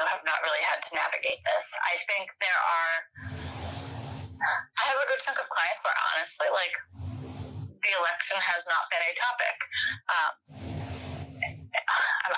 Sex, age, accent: female, 20-39, American